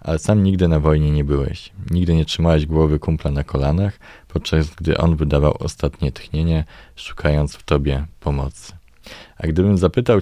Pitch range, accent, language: 75-85 Hz, native, Polish